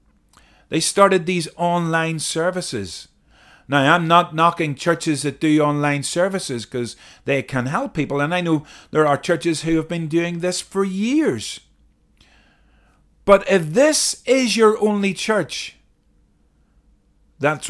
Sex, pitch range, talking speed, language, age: male, 140-225 Hz, 135 wpm, English, 40-59